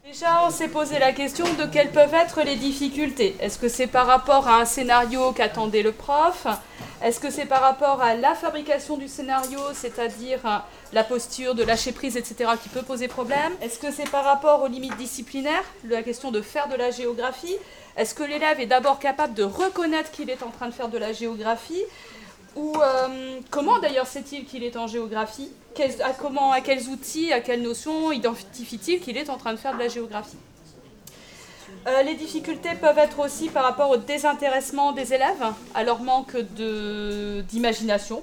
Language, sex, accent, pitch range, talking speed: French, female, French, 235-290 Hz, 190 wpm